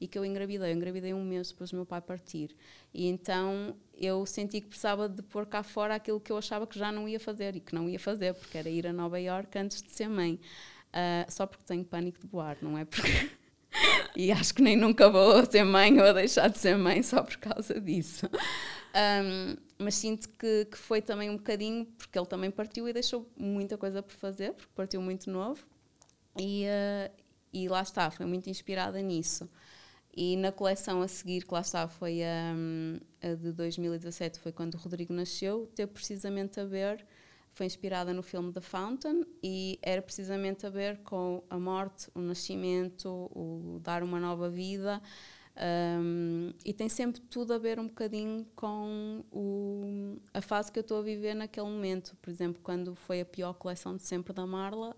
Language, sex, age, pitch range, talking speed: Portuguese, female, 20-39, 180-210 Hz, 200 wpm